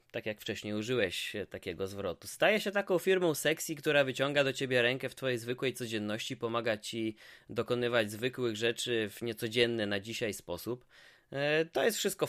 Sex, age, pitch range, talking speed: male, 20-39, 125-165 Hz, 160 wpm